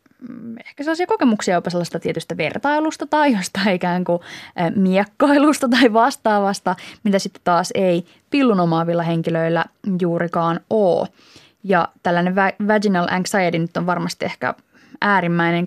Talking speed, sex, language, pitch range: 120 wpm, female, Finnish, 175-225 Hz